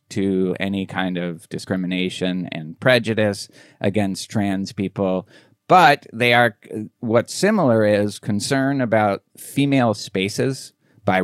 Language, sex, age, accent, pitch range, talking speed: English, male, 30-49, American, 90-110 Hz, 110 wpm